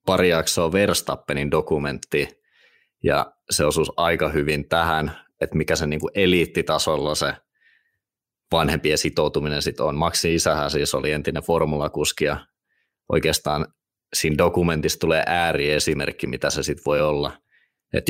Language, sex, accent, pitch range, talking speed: Finnish, male, native, 75-85 Hz, 125 wpm